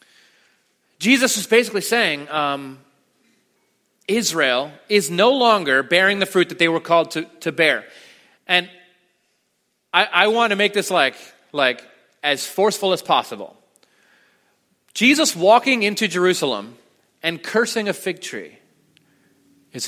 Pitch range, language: 165-230 Hz, English